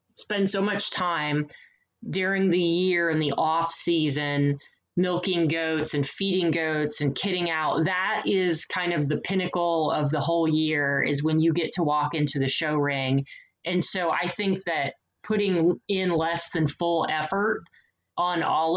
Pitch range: 150-180 Hz